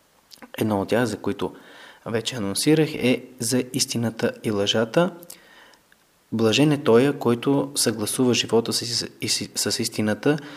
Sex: male